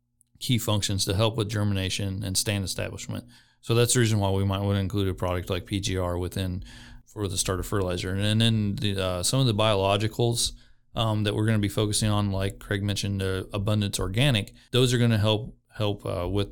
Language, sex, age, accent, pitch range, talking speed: English, male, 30-49, American, 95-110 Hz, 210 wpm